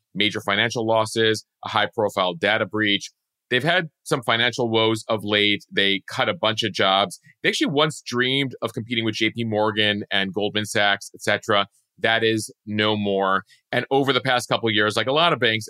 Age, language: 30-49, English